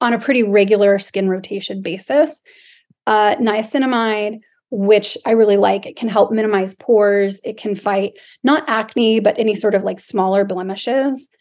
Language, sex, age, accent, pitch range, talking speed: English, female, 30-49, American, 205-245 Hz, 160 wpm